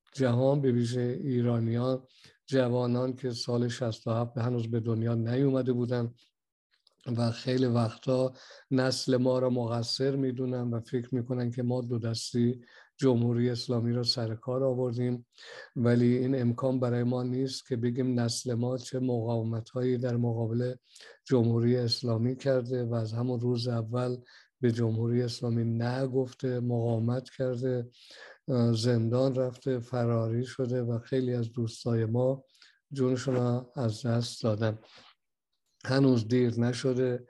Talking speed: 125 wpm